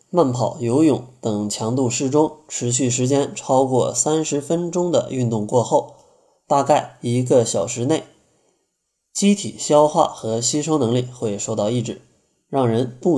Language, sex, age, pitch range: Chinese, male, 20-39, 115-155 Hz